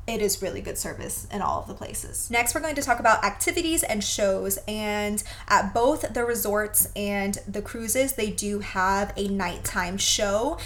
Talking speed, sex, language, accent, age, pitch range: 185 wpm, female, English, American, 20-39, 195-225 Hz